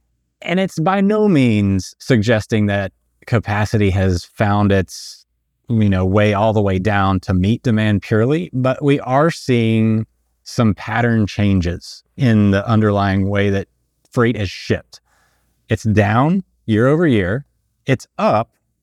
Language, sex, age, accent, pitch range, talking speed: English, male, 30-49, American, 95-125 Hz, 140 wpm